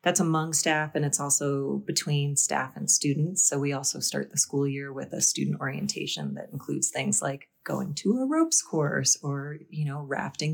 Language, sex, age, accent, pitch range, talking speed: English, female, 30-49, American, 140-160 Hz, 195 wpm